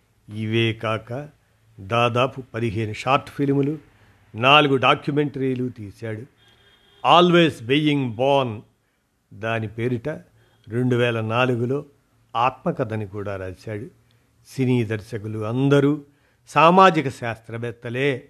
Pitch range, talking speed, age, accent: 110-135 Hz, 80 wpm, 50-69, native